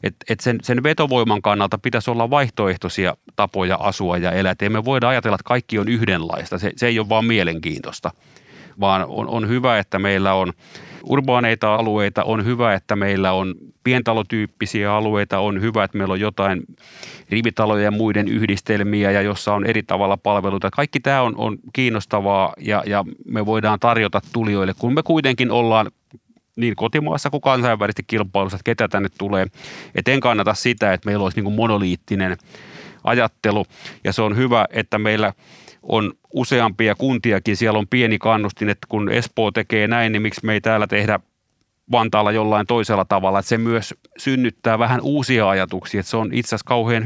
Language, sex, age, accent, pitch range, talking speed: Finnish, male, 30-49, native, 100-115 Hz, 170 wpm